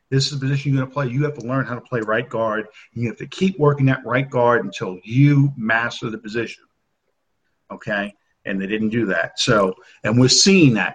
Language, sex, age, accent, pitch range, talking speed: English, male, 50-69, American, 120-160 Hz, 225 wpm